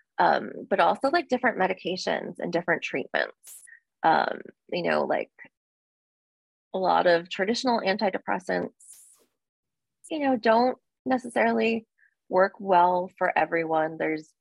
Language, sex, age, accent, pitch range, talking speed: English, female, 20-39, American, 160-240 Hz, 110 wpm